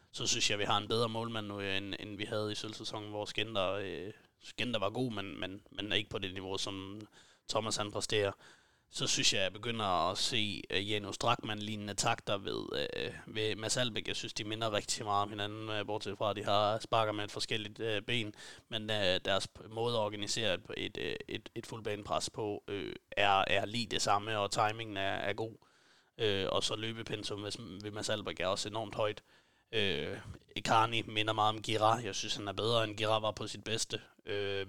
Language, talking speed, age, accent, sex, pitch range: Danish, 210 wpm, 30-49, native, male, 100-110 Hz